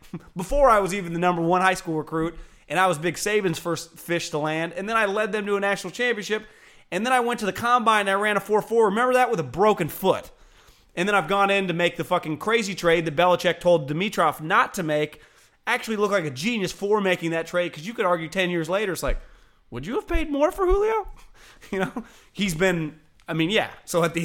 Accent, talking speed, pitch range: American, 245 wpm, 140-195 Hz